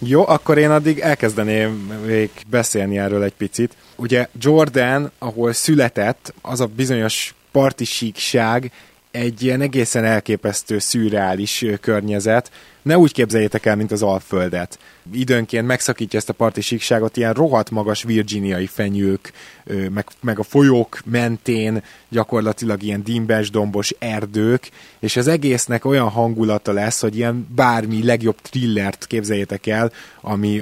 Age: 20-39